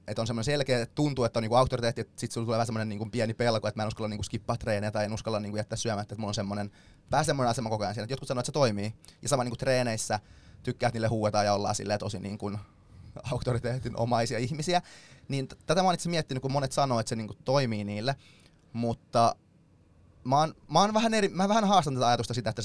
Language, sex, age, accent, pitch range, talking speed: Finnish, male, 20-39, native, 105-125 Hz, 230 wpm